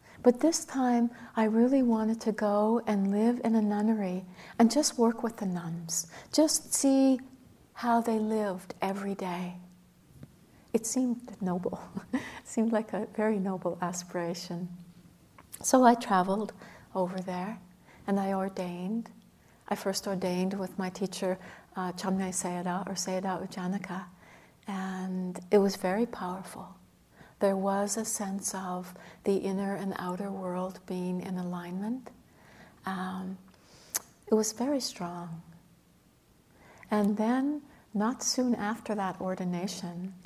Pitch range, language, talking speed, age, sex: 185-220 Hz, English, 130 wpm, 60-79, female